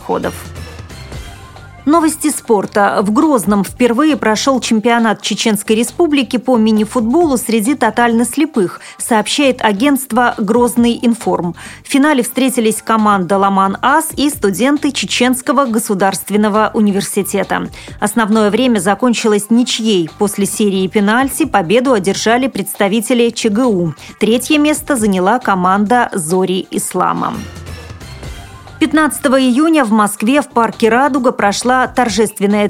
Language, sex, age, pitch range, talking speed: Russian, female, 30-49, 205-250 Hz, 100 wpm